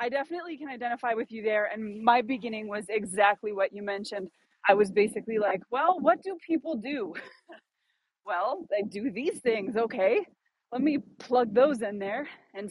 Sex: female